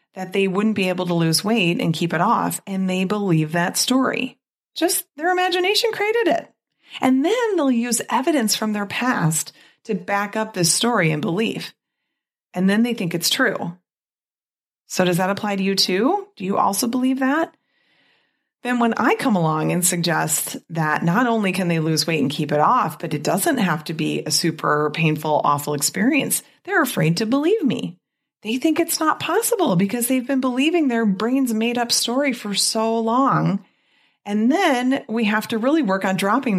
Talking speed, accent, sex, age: 190 wpm, American, female, 30-49